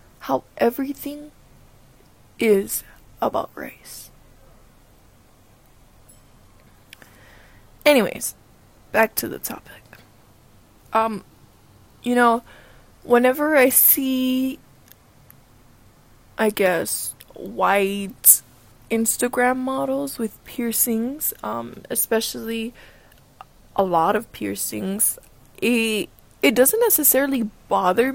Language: English